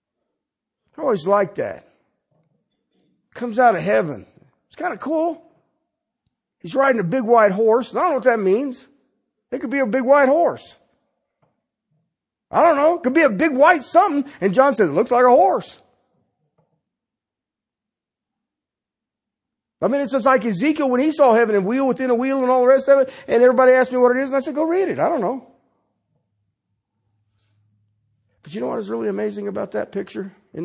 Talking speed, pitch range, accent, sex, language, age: 190 wpm, 155-255 Hz, American, male, English, 50-69